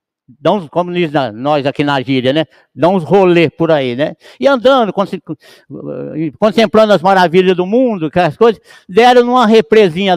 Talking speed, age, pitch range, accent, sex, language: 155 wpm, 60-79, 175-250 Hz, Brazilian, male, Portuguese